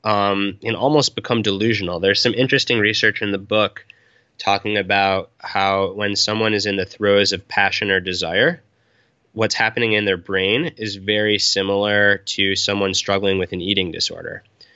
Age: 20-39